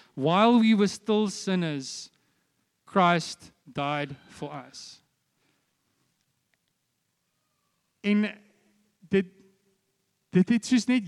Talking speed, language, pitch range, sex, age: 80 wpm, English, 180-230 Hz, male, 40-59